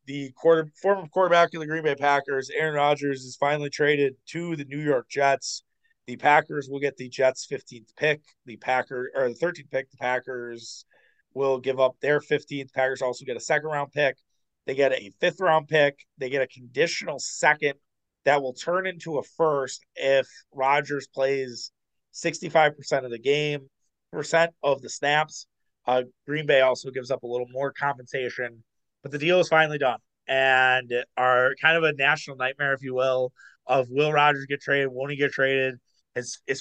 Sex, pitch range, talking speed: male, 130-150 Hz, 175 wpm